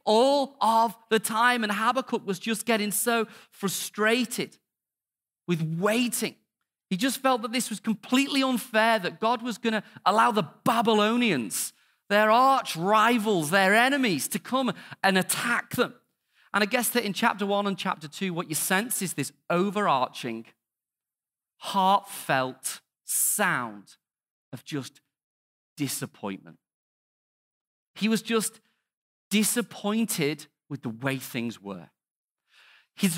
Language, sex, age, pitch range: English, male, 40-59, 155-225 Hz